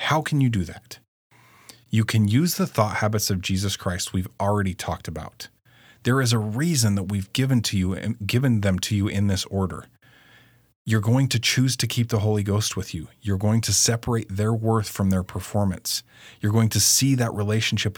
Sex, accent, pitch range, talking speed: male, American, 95-120 Hz, 205 wpm